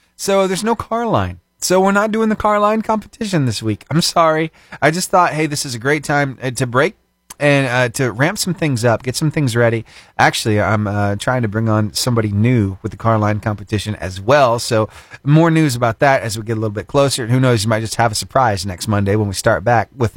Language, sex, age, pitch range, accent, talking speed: English, male, 30-49, 110-165 Hz, American, 245 wpm